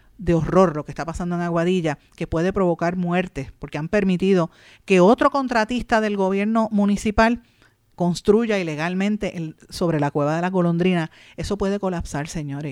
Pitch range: 165-210 Hz